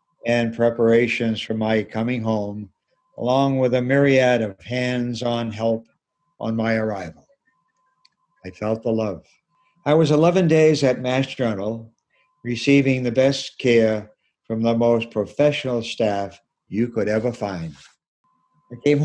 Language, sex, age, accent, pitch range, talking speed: English, male, 60-79, American, 115-150 Hz, 130 wpm